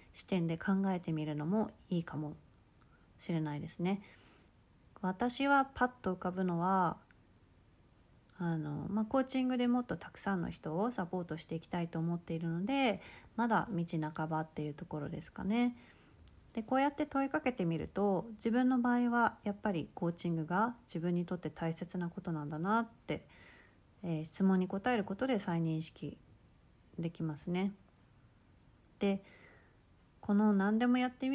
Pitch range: 160-220 Hz